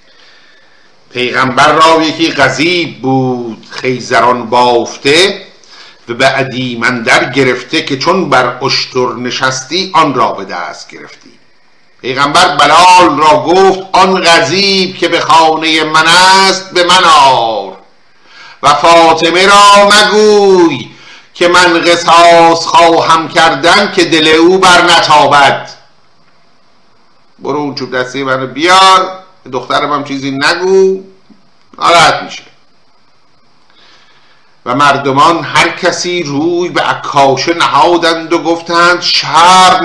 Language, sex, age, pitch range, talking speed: Persian, male, 50-69, 145-185 Hz, 105 wpm